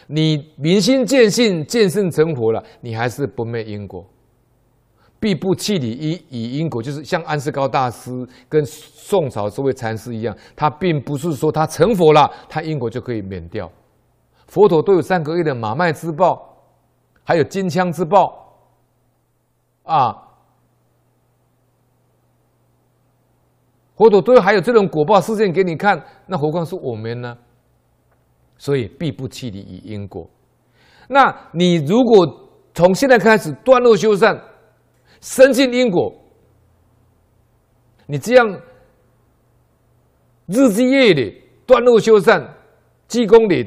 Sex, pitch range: male, 115-195 Hz